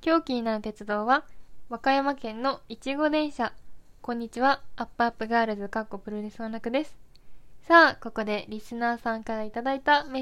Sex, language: female, Japanese